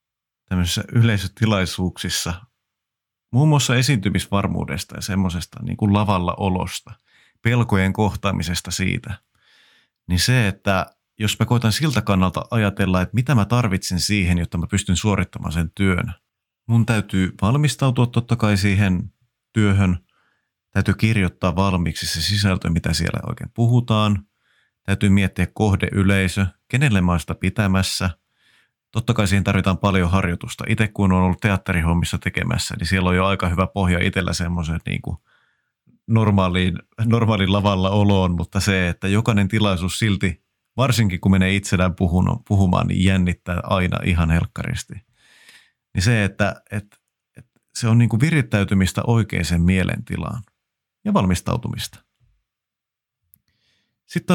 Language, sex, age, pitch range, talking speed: Finnish, male, 30-49, 95-110 Hz, 125 wpm